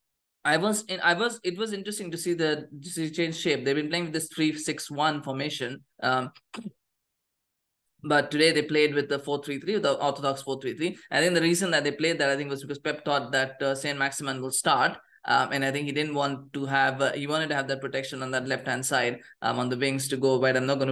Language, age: English, 20-39